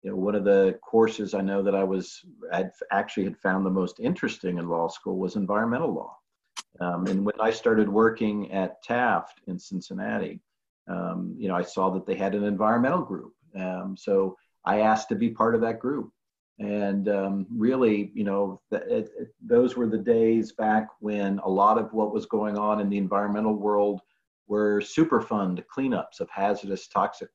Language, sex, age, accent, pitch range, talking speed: English, male, 50-69, American, 100-110 Hz, 190 wpm